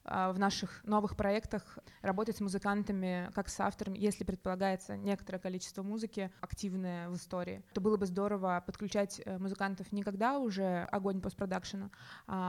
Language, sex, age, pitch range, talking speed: Russian, female, 20-39, 185-205 Hz, 145 wpm